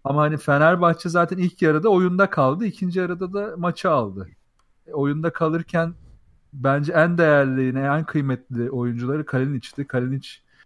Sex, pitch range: male, 125-155 Hz